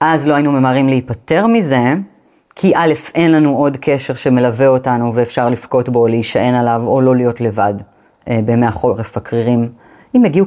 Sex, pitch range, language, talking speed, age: female, 125-165 Hz, Hebrew, 165 wpm, 30-49